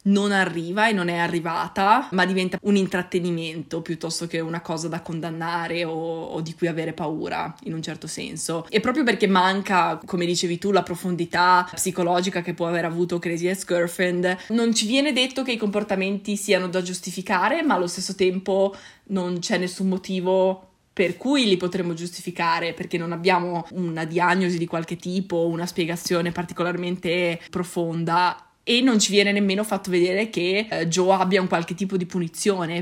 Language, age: Italian, 20-39